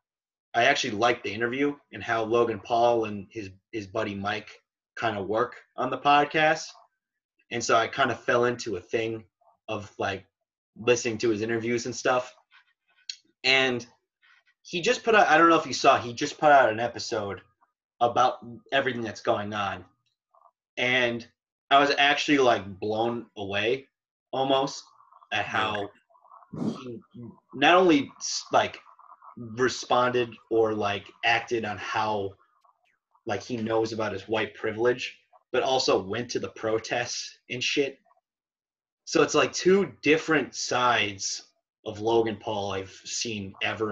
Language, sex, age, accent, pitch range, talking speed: English, male, 20-39, American, 105-130 Hz, 140 wpm